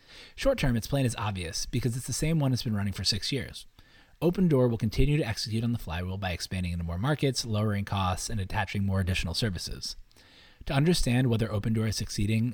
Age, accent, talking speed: 20-39, American, 205 wpm